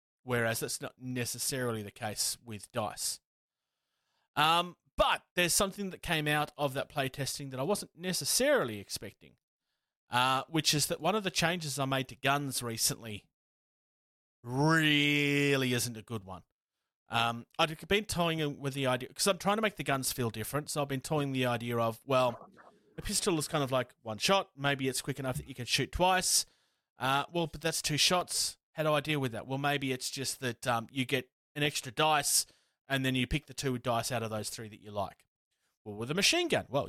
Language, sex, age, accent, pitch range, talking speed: English, male, 30-49, Australian, 115-150 Hz, 205 wpm